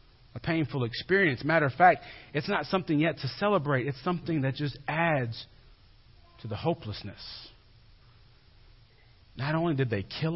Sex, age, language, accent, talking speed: male, 40-59, English, American, 145 wpm